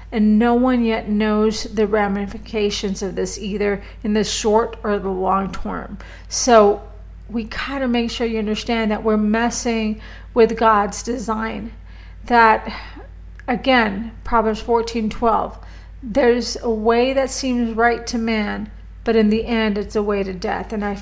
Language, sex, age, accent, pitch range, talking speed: English, female, 40-59, American, 205-230 Hz, 155 wpm